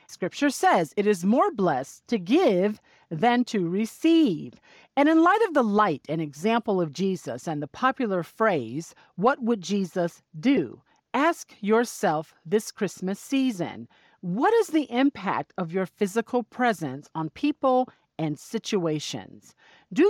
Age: 40-59